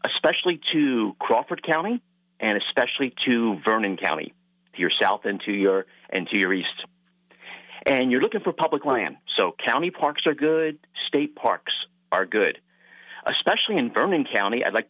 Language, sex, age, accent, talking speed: English, male, 40-59, American, 155 wpm